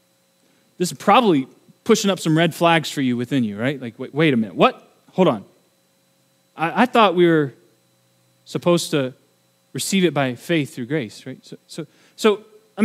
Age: 30-49